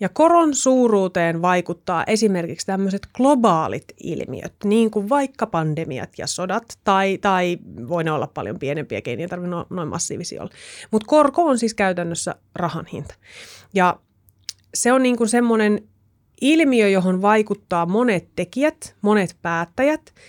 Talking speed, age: 135 wpm, 30-49